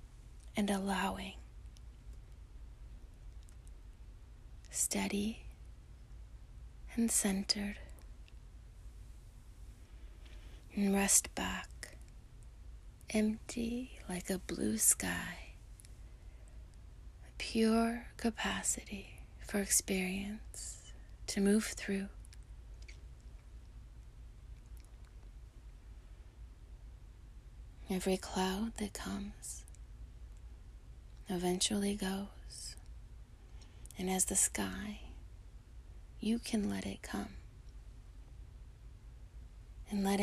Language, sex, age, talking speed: English, female, 20-39, 55 wpm